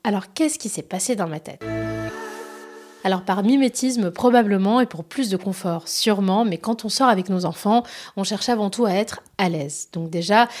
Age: 30-49